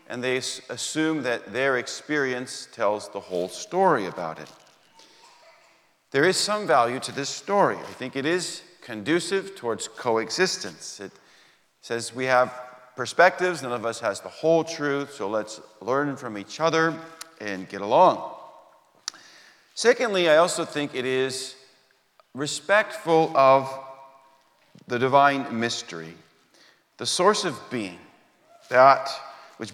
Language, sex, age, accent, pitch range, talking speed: English, male, 40-59, American, 120-160 Hz, 130 wpm